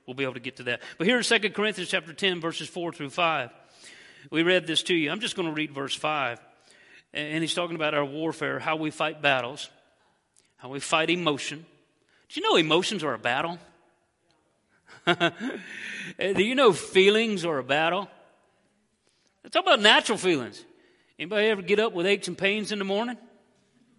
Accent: American